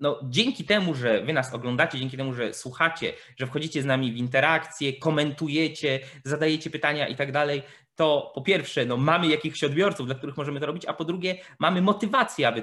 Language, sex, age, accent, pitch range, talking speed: Polish, male, 20-39, native, 125-160 Hz, 185 wpm